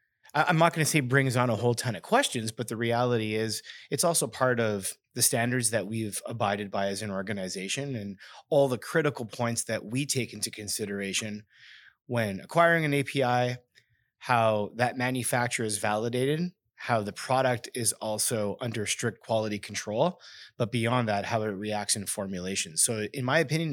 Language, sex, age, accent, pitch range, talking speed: English, male, 30-49, American, 110-135 Hz, 175 wpm